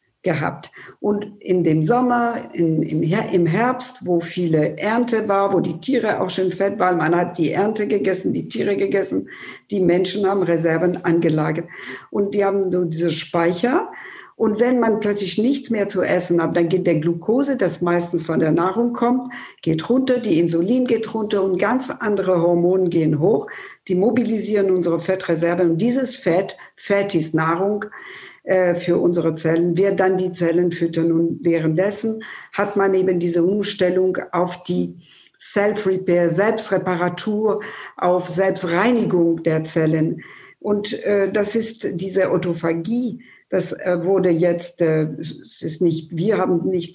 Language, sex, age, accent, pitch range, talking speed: German, female, 50-69, German, 170-210 Hz, 150 wpm